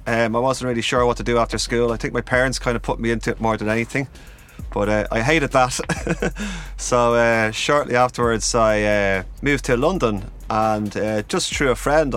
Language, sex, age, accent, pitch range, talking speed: English, male, 30-49, Irish, 105-135 Hz, 210 wpm